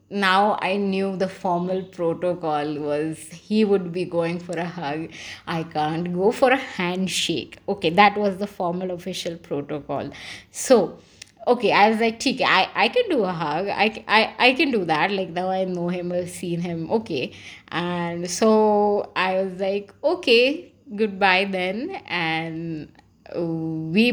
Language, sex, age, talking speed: Hindi, female, 20-39, 160 wpm